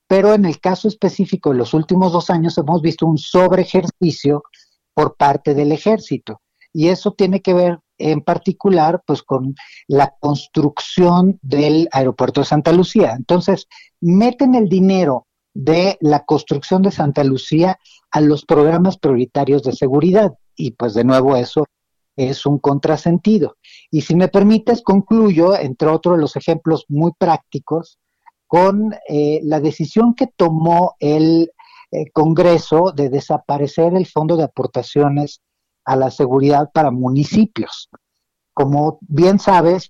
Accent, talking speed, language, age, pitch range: Mexican, 140 wpm, Spanish, 40-59, 140-185 Hz